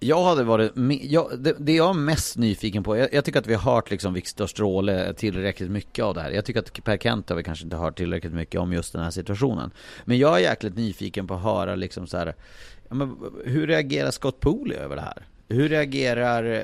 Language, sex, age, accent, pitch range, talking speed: Swedish, male, 30-49, native, 95-125 Hz, 225 wpm